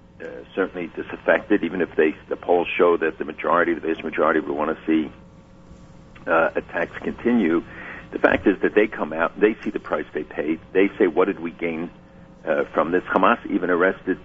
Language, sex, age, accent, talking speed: English, male, 60-79, American, 200 wpm